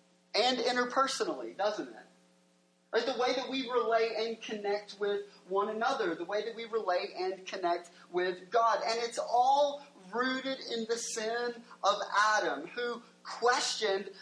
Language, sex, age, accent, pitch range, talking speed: English, male, 30-49, American, 185-255 Hz, 145 wpm